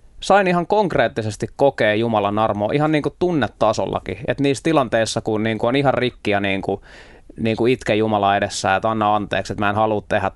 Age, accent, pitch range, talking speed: 20-39, native, 105-135 Hz, 185 wpm